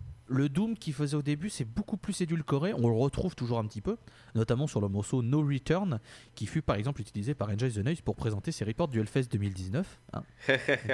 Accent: French